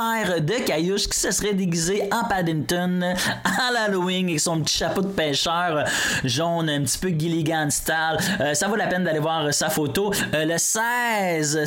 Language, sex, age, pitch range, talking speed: French, male, 20-39, 145-185 Hz, 175 wpm